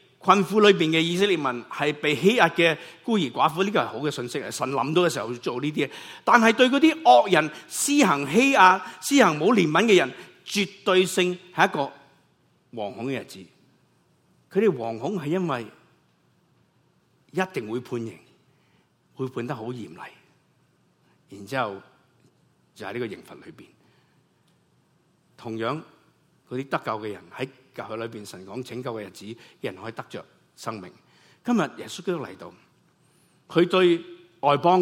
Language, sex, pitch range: Chinese, male, 125-185 Hz